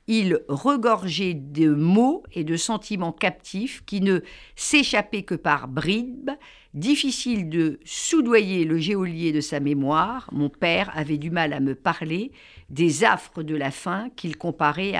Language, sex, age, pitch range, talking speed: French, female, 50-69, 145-210 Hz, 150 wpm